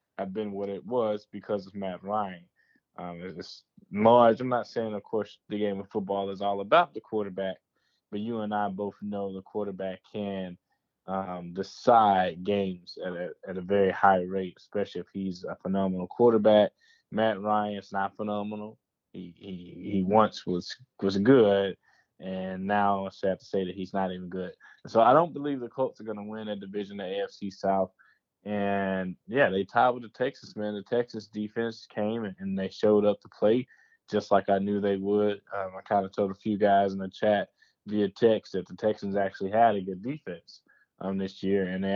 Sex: male